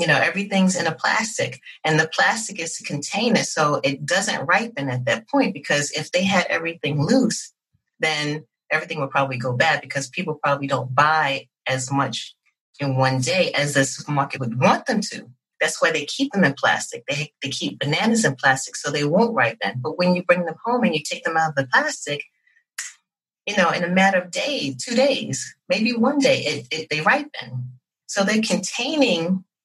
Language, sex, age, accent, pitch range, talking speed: English, female, 40-59, American, 140-200 Hz, 200 wpm